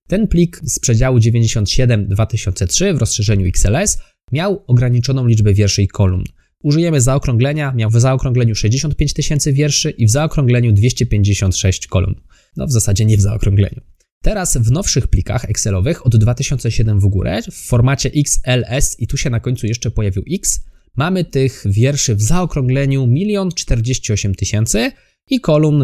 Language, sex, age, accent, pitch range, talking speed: Polish, male, 20-39, native, 110-145 Hz, 145 wpm